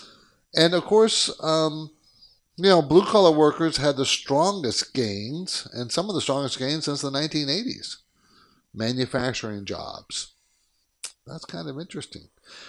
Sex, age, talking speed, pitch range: male, 50-69, 130 wpm, 135-170 Hz